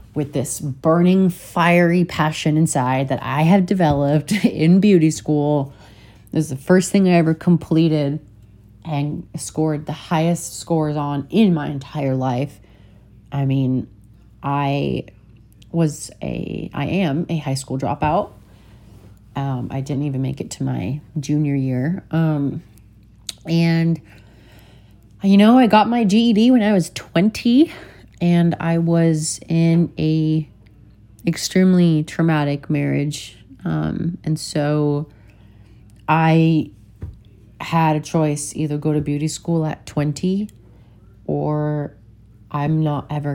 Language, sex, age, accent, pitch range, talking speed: English, female, 30-49, American, 125-160 Hz, 125 wpm